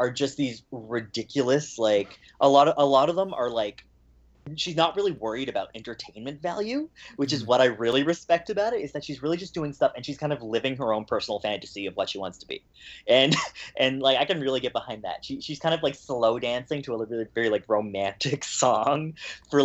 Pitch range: 110-150 Hz